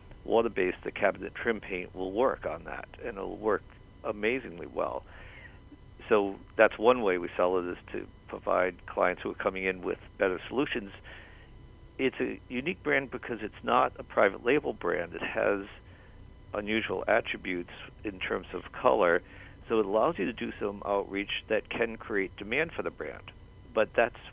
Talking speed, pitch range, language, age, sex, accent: 170 wpm, 95-110 Hz, English, 50-69, male, American